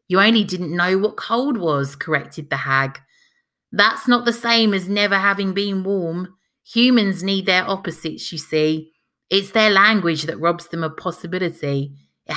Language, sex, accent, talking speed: English, female, British, 165 wpm